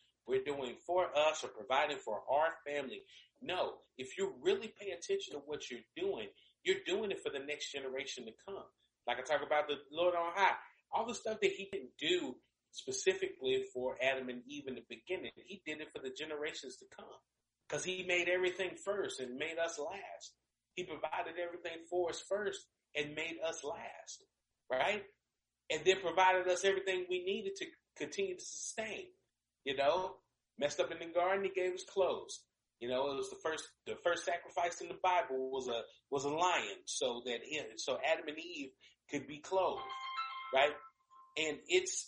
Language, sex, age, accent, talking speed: English, male, 40-59, American, 185 wpm